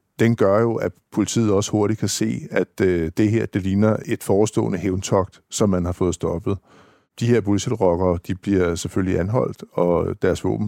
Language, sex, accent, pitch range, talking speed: Danish, male, native, 95-110 Hz, 180 wpm